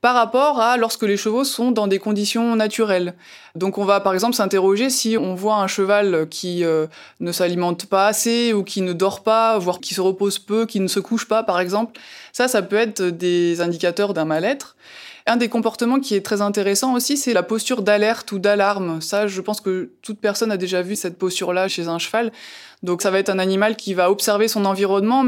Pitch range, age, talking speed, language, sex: 185-230 Hz, 20-39, 215 wpm, French, female